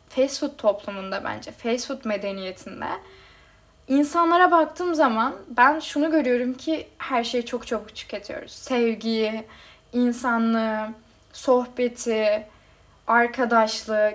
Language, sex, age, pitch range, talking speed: Turkish, female, 10-29, 230-290 Hz, 100 wpm